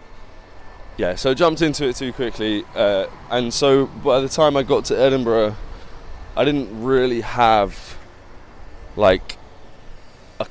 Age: 20-39